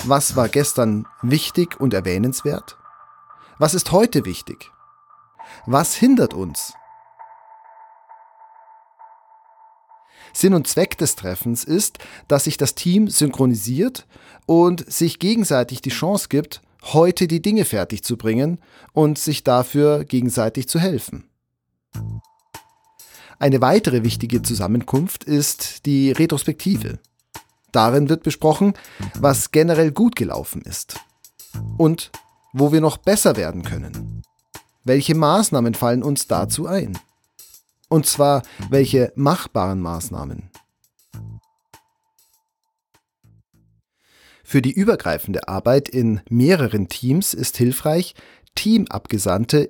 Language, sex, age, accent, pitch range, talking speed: German, male, 40-59, German, 125-200 Hz, 105 wpm